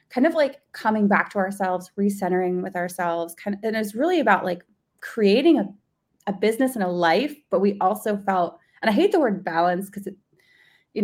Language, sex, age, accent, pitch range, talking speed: English, female, 20-39, American, 175-210 Hz, 200 wpm